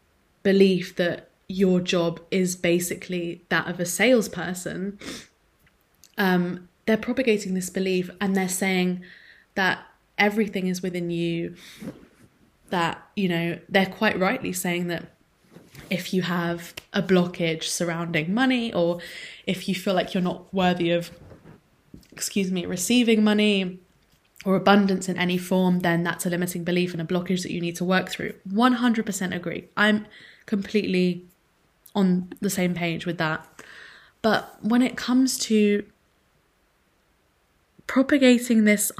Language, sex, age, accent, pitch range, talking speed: English, female, 20-39, British, 175-205 Hz, 135 wpm